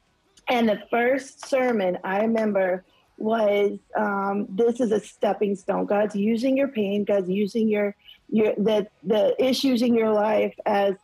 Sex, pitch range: female, 215-270 Hz